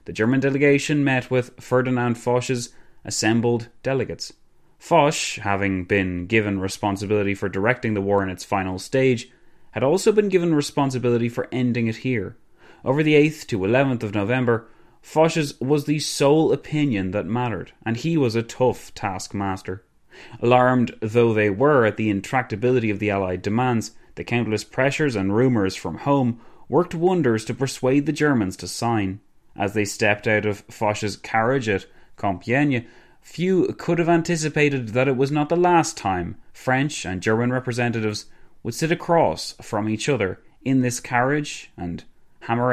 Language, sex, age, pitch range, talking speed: English, male, 30-49, 105-140 Hz, 155 wpm